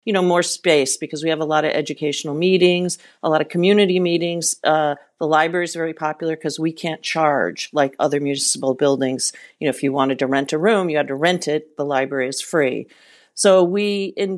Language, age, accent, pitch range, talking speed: English, 40-59, American, 155-185 Hz, 215 wpm